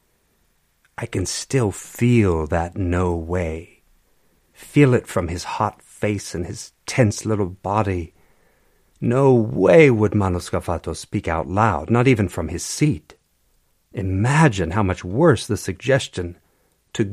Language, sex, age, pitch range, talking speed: English, male, 50-69, 80-120 Hz, 130 wpm